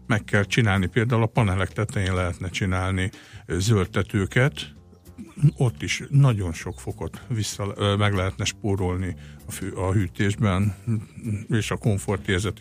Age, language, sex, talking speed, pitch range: 60-79, Hungarian, male, 125 wpm, 95-115 Hz